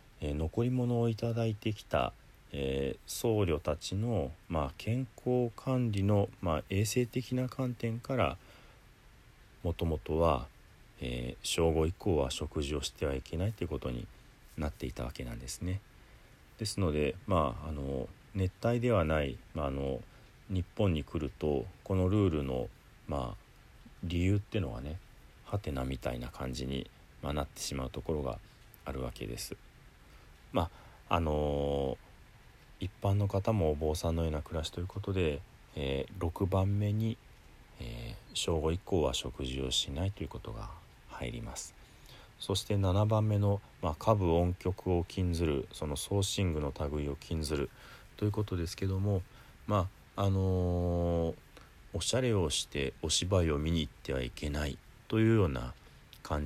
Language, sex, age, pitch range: Japanese, male, 40-59, 75-105 Hz